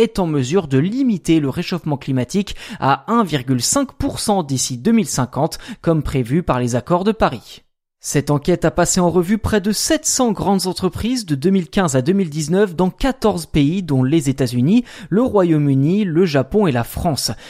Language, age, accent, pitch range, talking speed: French, 20-39, French, 145-205 Hz, 160 wpm